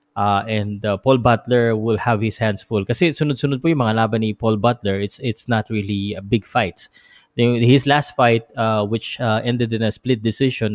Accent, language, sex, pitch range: native, Filipino, male, 110-140 Hz